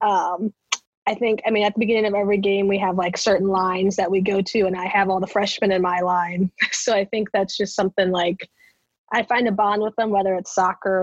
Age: 20-39